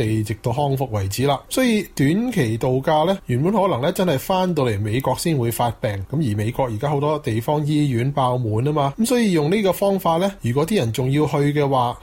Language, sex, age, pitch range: Chinese, male, 20-39, 125-165 Hz